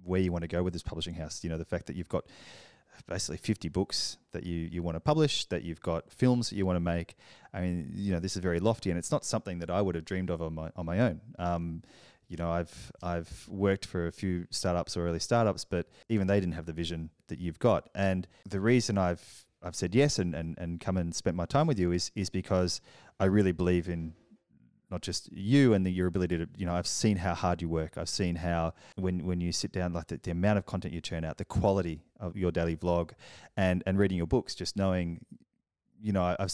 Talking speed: 255 wpm